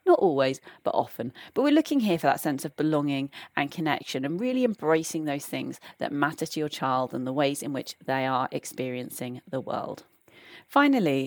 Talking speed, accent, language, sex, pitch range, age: 190 wpm, British, English, female, 145-190 Hz, 30-49